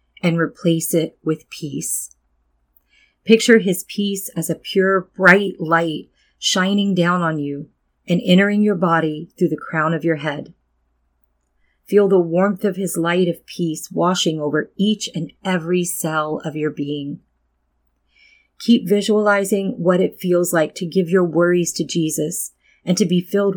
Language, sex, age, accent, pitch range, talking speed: English, female, 40-59, American, 150-185 Hz, 155 wpm